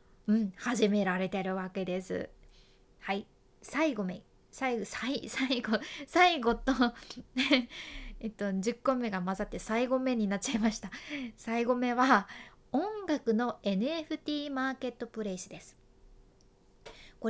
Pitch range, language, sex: 205-305 Hz, Japanese, female